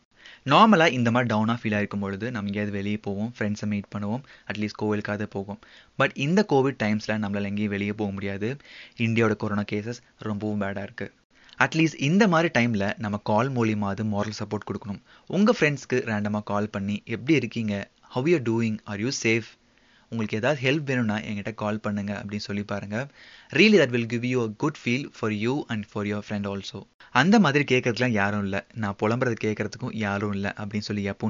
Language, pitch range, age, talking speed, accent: Tamil, 105-125 Hz, 20-39, 190 wpm, native